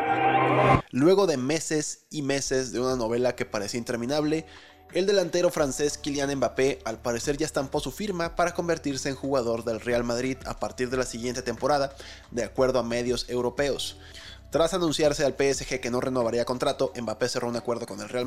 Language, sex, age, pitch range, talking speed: Spanish, male, 20-39, 115-135 Hz, 180 wpm